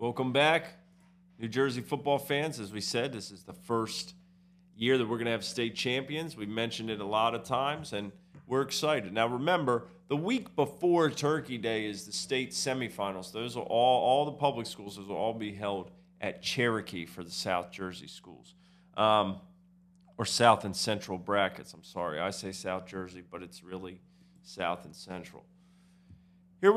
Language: English